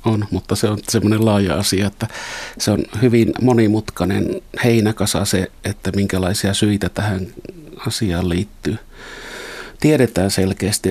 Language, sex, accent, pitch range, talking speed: Finnish, male, native, 95-110 Hz, 120 wpm